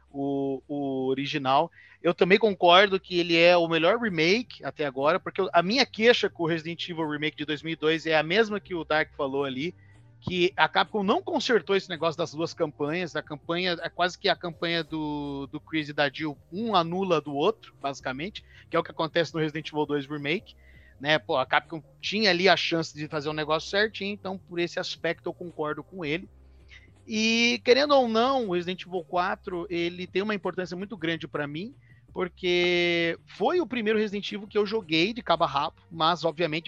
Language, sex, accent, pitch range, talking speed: Portuguese, male, Brazilian, 150-190 Hz, 200 wpm